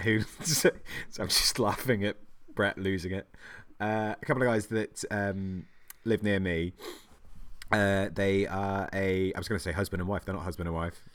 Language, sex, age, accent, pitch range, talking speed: English, male, 30-49, British, 80-100 Hz, 195 wpm